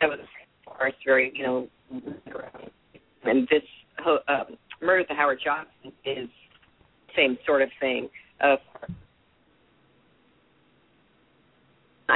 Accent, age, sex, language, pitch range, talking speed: American, 40-59, female, English, 135-165 Hz, 100 wpm